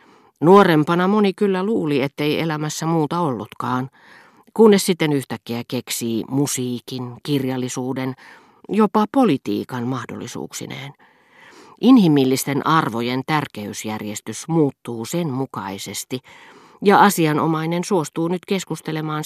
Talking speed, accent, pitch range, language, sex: 85 wpm, native, 115-155 Hz, Finnish, female